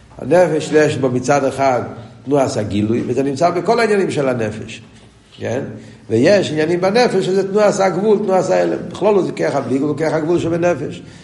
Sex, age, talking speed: male, 50-69, 185 wpm